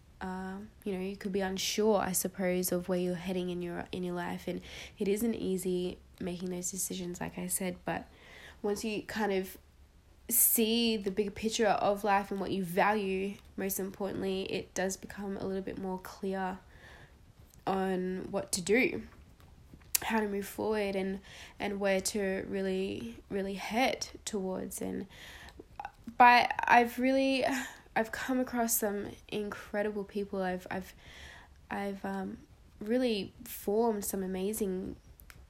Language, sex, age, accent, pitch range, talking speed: English, female, 10-29, Australian, 180-205 Hz, 150 wpm